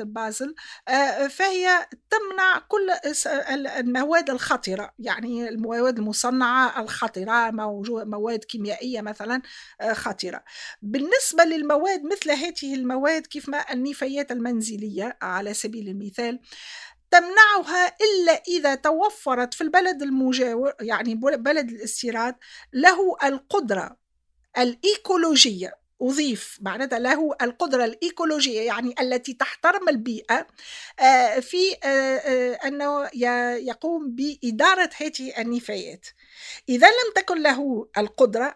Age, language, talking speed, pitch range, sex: 50-69, Arabic, 90 wpm, 240-325 Hz, female